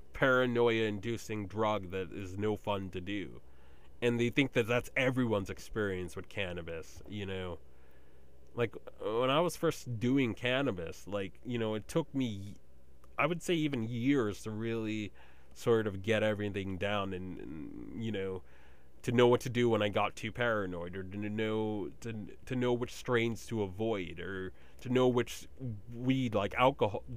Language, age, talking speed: English, 30-49, 170 wpm